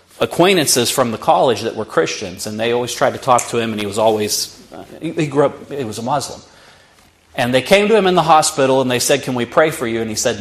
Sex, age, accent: male, 40-59, American